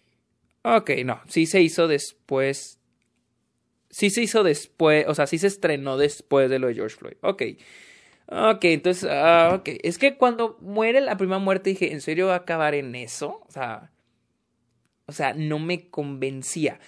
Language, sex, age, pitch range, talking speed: Spanish, male, 20-39, 145-195 Hz, 170 wpm